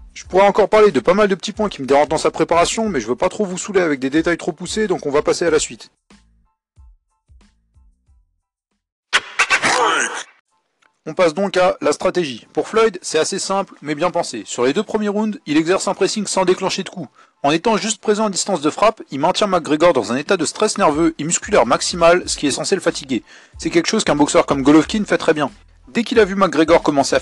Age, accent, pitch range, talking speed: 40-59, French, 145-200 Hz, 230 wpm